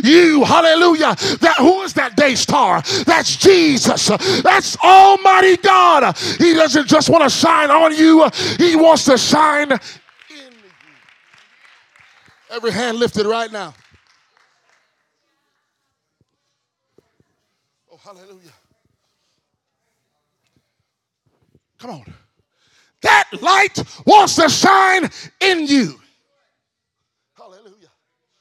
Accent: American